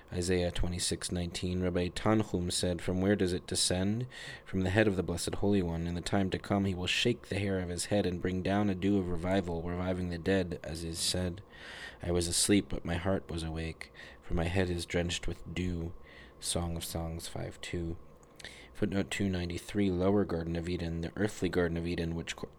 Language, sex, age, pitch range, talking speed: English, male, 20-39, 85-95 Hz, 200 wpm